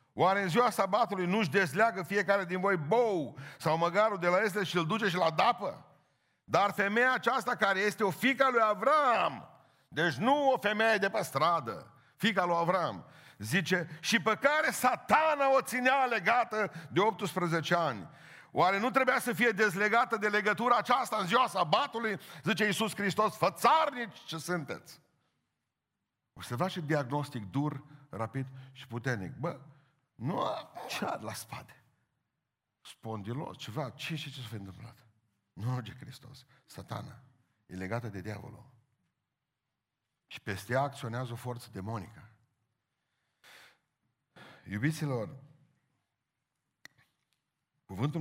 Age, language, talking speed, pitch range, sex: 50-69, Romanian, 140 wpm, 125-205 Hz, male